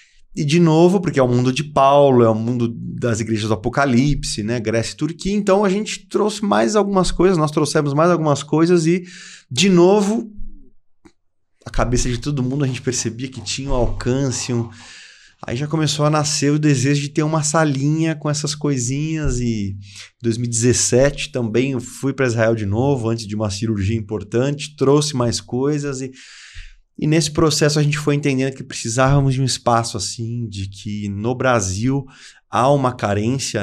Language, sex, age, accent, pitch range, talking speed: Portuguese, male, 20-39, Brazilian, 115-145 Hz, 180 wpm